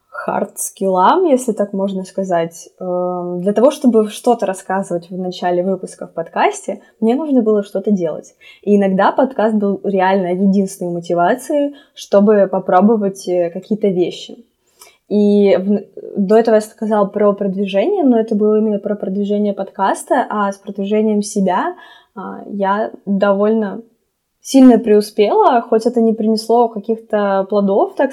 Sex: female